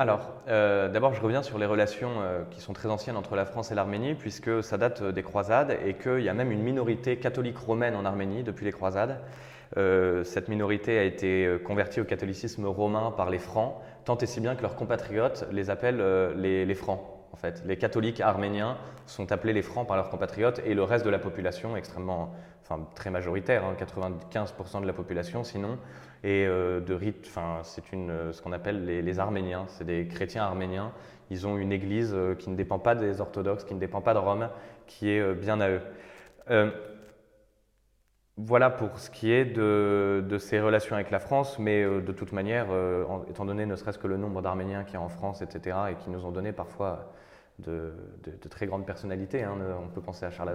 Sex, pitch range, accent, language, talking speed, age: male, 95-110 Hz, French, French, 215 wpm, 20-39